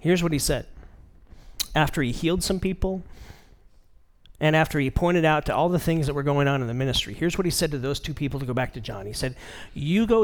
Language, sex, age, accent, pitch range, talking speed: English, male, 40-59, American, 110-155 Hz, 245 wpm